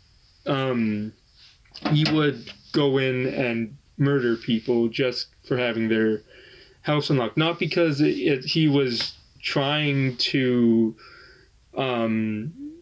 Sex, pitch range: male, 115-135 Hz